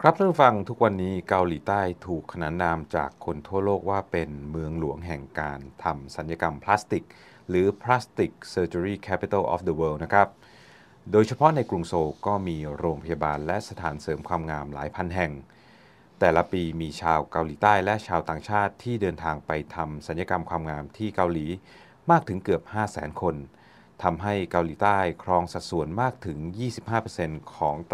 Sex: male